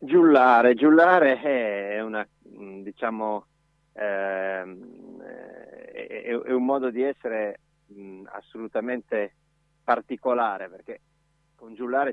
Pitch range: 105-140 Hz